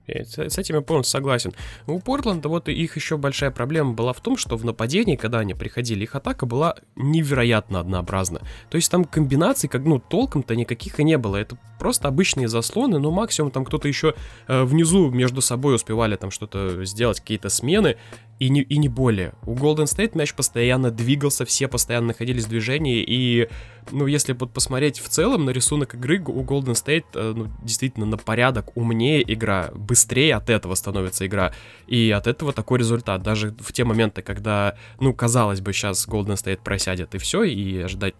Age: 20-39